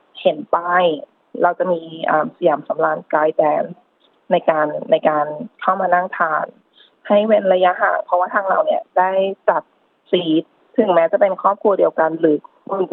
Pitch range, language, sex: 170-195 Hz, Thai, female